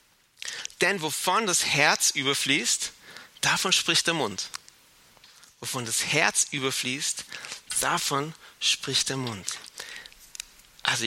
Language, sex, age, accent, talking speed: German, male, 40-59, German, 100 wpm